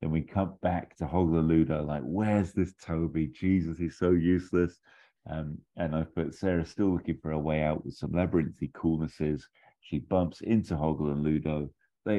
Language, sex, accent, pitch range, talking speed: English, male, British, 75-85 Hz, 185 wpm